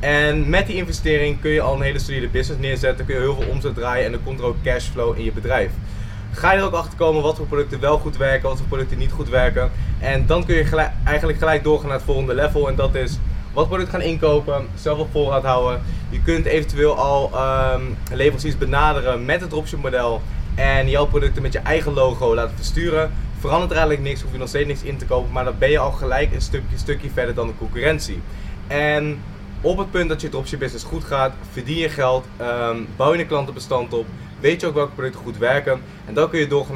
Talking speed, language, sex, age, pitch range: 230 wpm, Dutch, male, 20-39, 120-150 Hz